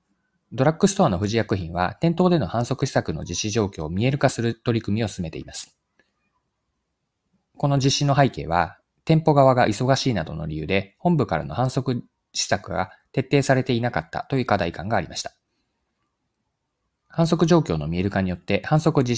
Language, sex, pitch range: Japanese, male, 95-150 Hz